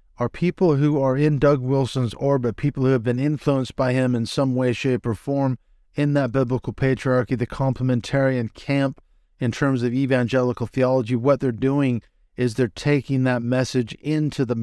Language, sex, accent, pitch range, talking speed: English, male, American, 120-135 Hz, 175 wpm